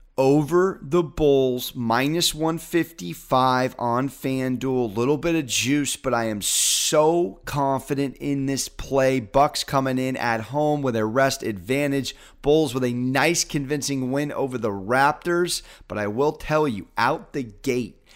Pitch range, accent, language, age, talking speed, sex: 125-155 Hz, American, English, 30-49, 150 wpm, male